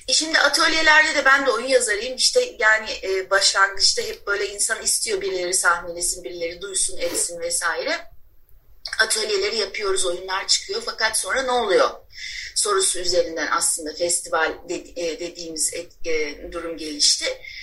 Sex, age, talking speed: female, 30-49, 125 wpm